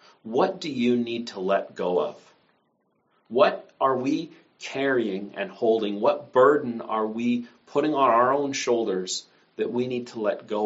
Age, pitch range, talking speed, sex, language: 40-59, 100-120 Hz, 165 wpm, male, English